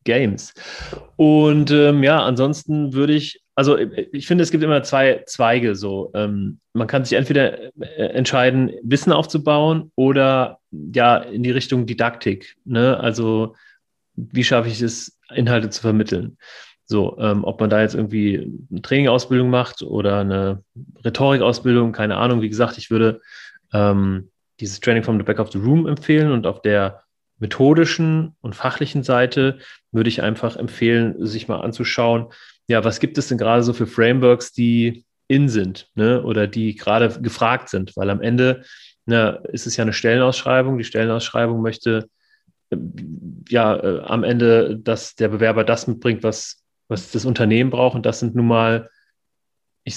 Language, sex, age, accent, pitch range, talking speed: German, male, 30-49, German, 110-130 Hz, 160 wpm